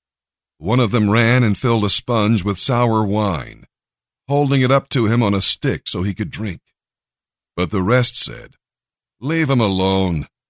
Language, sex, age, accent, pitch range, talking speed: English, male, 50-69, American, 95-125 Hz, 170 wpm